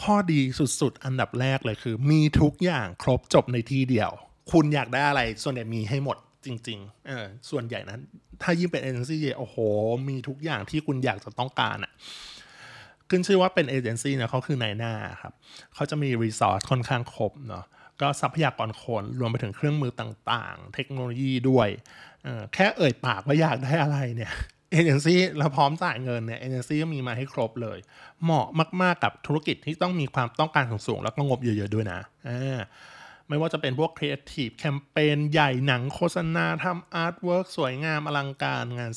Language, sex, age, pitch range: Thai, male, 20-39, 120-150 Hz